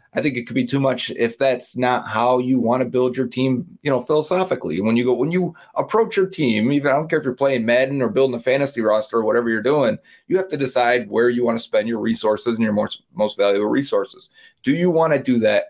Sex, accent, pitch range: male, American, 105-140 Hz